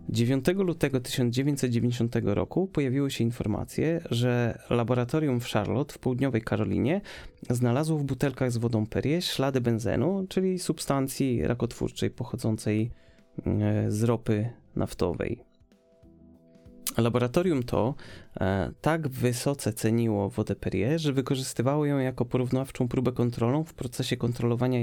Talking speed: 110 wpm